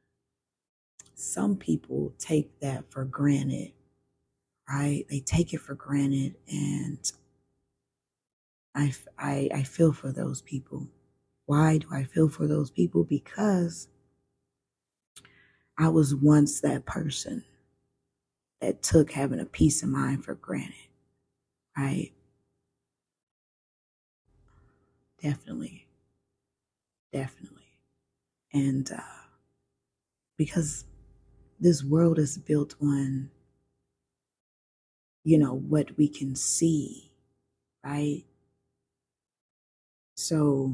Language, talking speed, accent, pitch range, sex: English, 90 wpm, American, 130-155 Hz, female